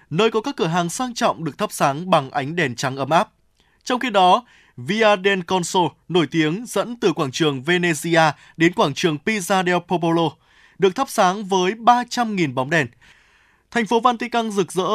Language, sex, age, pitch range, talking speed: Vietnamese, male, 20-39, 150-200 Hz, 190 wpm